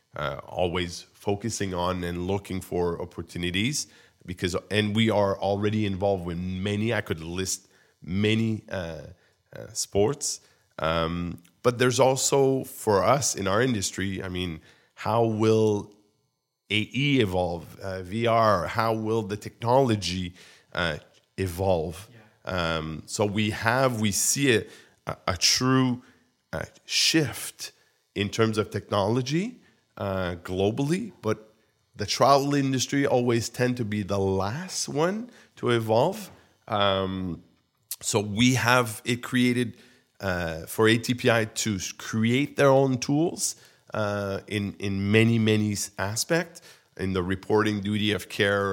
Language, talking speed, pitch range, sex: English, 125 wpm, 95-115 Hz, male